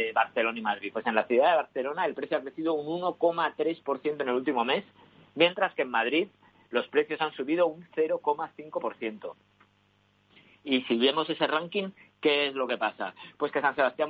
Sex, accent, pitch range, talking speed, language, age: male, Spanish, 125-155 Hz, 185 wpm, Spanish, 50-69